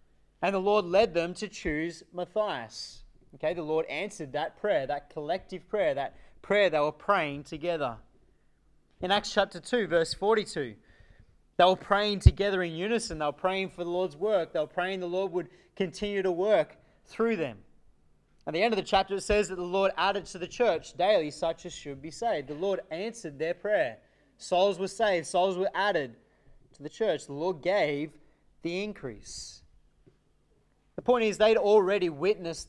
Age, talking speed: 20-39, 180 wpm